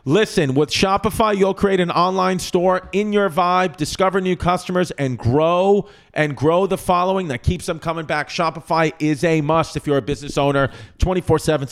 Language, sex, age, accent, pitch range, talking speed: English, male, 40-59, American, 135-175 Hz, 180 wpm